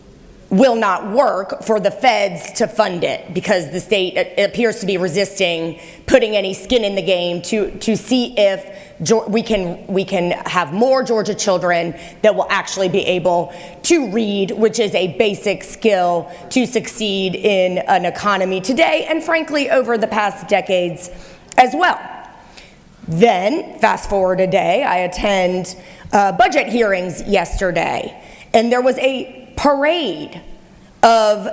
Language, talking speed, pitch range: English, 145 wpm, 195-240 Hz